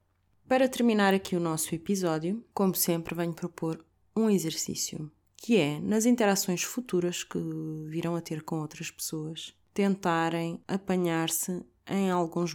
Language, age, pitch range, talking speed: Portuguese, 20-39, 160-185 Hz, 135 wpm